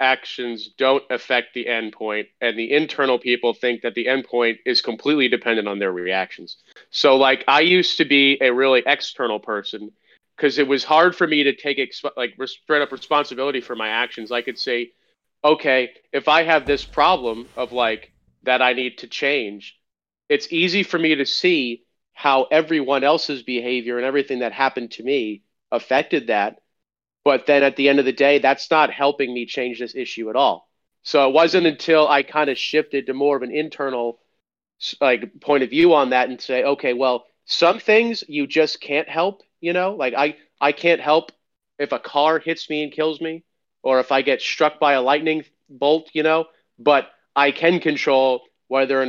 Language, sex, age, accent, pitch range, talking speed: English, male, 30-49, American, 125-150 Hz, 190 wpm